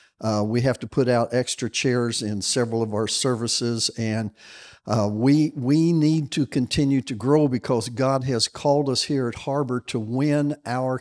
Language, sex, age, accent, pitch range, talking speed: English, male, 50-69, American, 115-145 Hz, 180 wpm